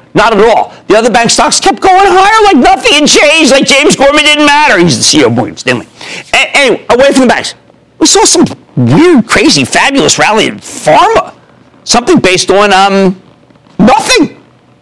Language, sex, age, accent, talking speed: English, male, 50-69, American, 180 wpm